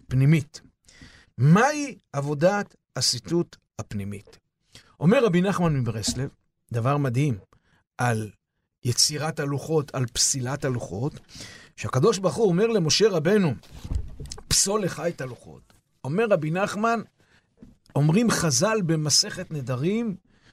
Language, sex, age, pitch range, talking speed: Hebrew, male, 50-69, 135-200 Hz, 95 wpm